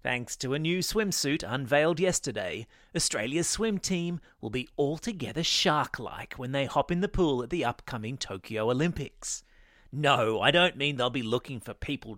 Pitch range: 120-175 Hz